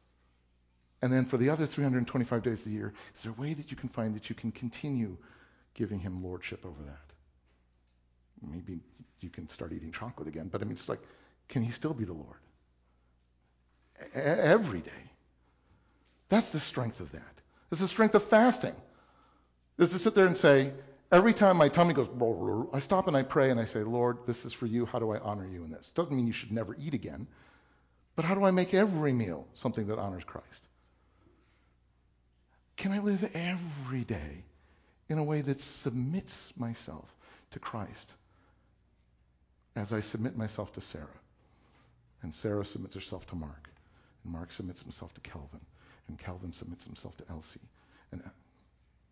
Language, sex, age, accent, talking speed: English, male, 50-69, American, 175 wpm